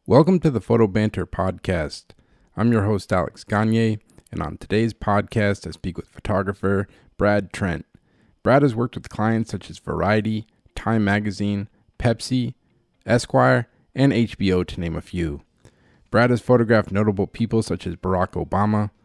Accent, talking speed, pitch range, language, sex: American, 150 wpm, 95-115 Hz, English, male